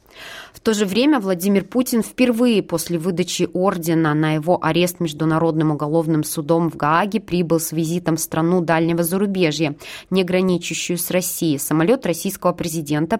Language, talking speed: Russian, 145 wpm